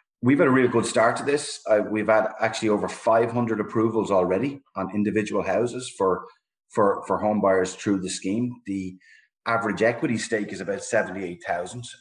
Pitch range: 95-110 Hz